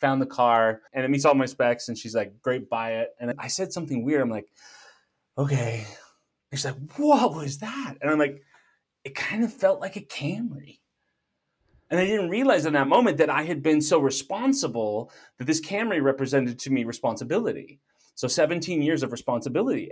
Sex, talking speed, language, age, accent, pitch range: male, 190 wpm, English, 30-49, American, 125-170 Hz